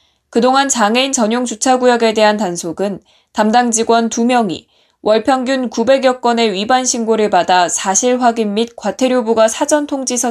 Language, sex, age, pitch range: Korean, female, 20-39, 200-255 Hz